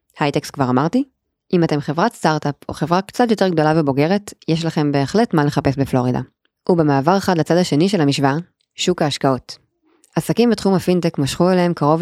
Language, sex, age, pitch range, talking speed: Hebrew, female, 20-39, 145-185 Hz, 165 wpm